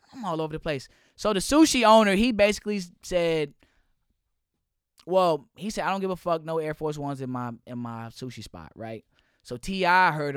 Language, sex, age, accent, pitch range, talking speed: English, male, 20-39, American, 135-185 Hz, 190 wpm